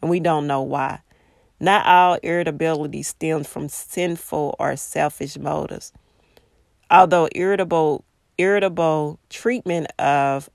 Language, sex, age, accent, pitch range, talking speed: English, female, 40-59, American, 150-185 Hz, 100 wpm